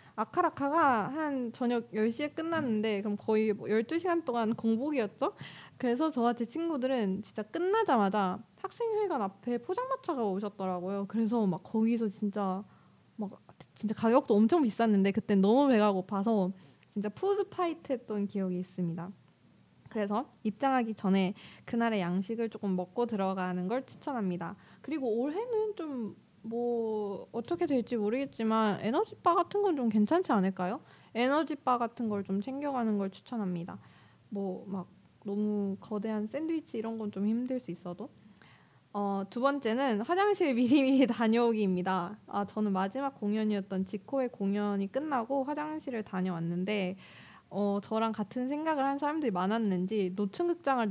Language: Korean